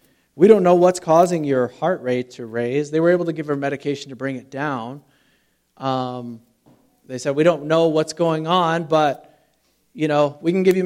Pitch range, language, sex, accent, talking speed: 145-185 Hz, English, male, American, 205 wpm